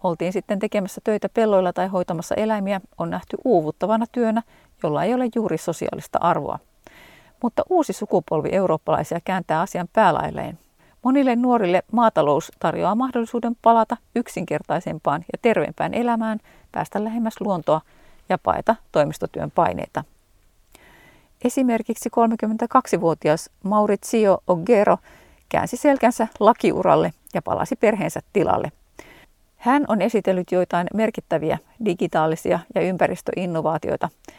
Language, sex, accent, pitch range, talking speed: Finnish, female, native, 180-235 Hz, 105 wpm